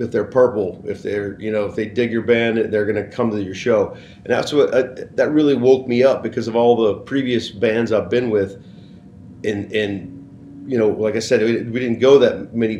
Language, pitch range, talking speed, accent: English, 100-125 Hz, 225 wpm, American